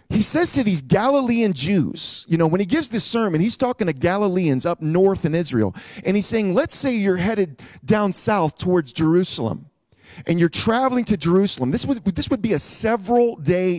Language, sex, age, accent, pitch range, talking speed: English, male, 40-59, American, 150-220 Hz, 185 wpm